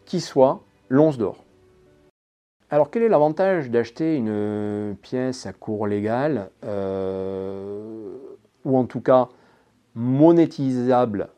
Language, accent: French, French